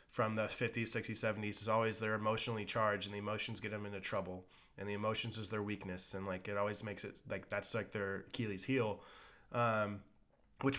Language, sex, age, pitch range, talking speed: English, male, 20-39, 100-120 Hz, 205 wpm